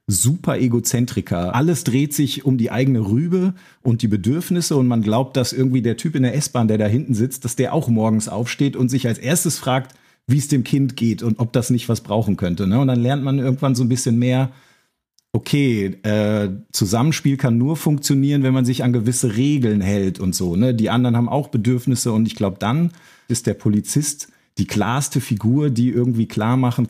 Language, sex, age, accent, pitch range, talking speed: German, male, 40-59, German, 110-135 Hz, 205 wpm